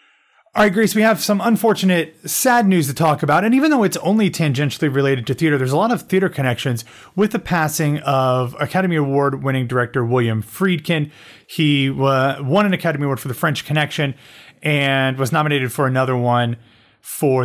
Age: 30-49